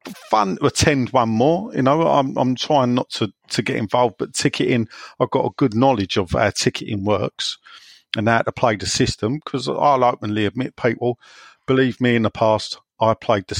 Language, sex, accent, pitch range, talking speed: English, male, British, 105-135 Hz, 200 wpm